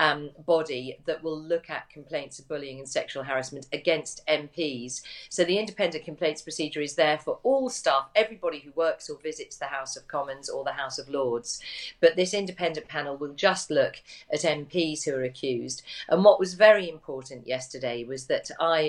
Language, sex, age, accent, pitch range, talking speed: English, female, 40-59, British, 145-185 Hz, 185 wpm